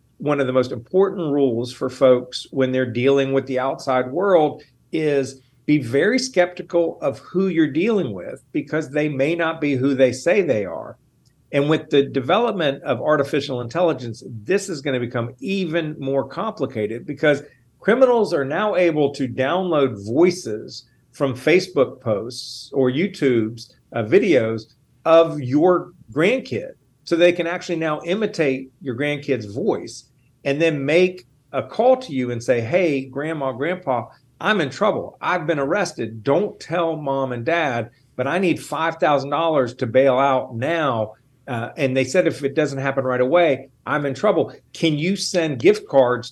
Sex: male